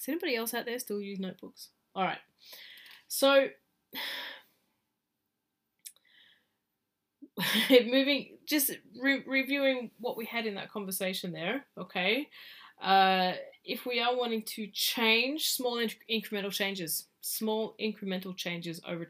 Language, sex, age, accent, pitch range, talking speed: English, female, 10-29, Australian, 170-230 Hz, 110 wpm